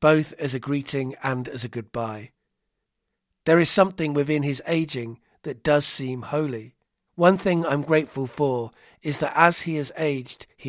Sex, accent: male, British